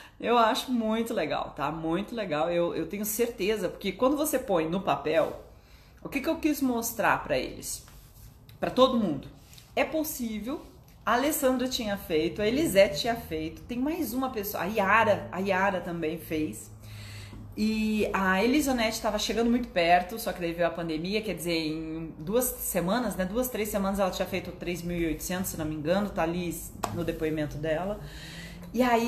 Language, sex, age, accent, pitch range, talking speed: Portuguese, female, 30-49, Brazilian, 170-240 Hz, 175 wpm